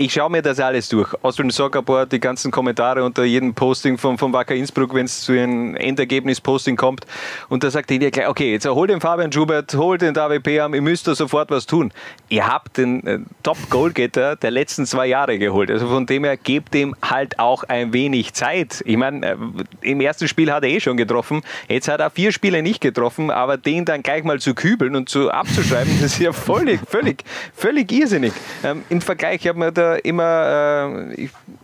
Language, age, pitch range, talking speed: German, 30-49, 130-155 Hz, 205 wpm